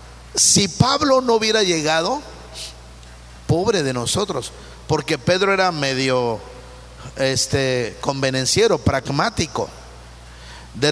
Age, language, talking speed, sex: 50-69, Spanish, 80 wpm, male